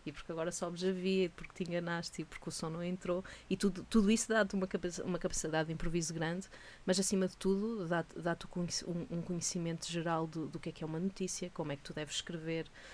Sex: female